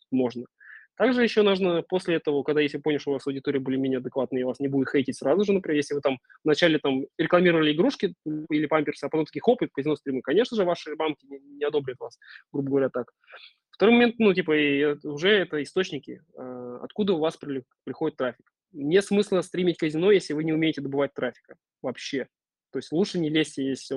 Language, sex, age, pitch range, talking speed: Russian, male, 20-39, 135-175 Hz, 200 wpm